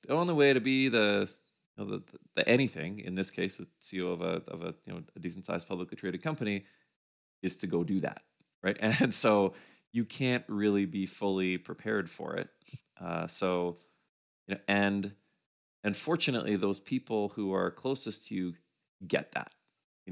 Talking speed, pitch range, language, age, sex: 185 wpm, 90-105 Hz, English, 20-39, male